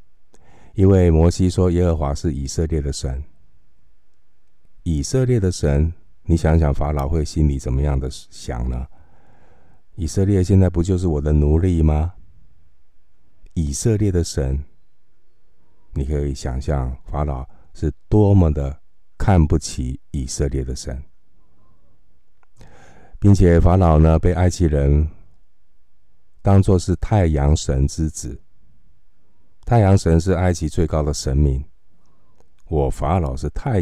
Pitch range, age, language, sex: 70-85 Hz, 50-69, Chinese, male